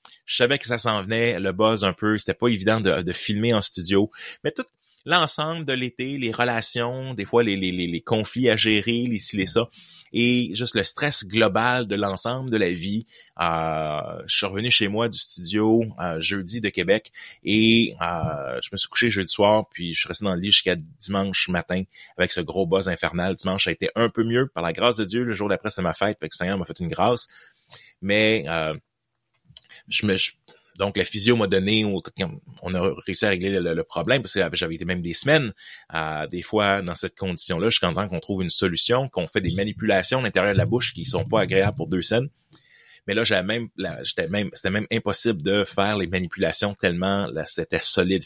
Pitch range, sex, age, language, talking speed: 95-115 Hz, male, 30-49, French, 225 wpm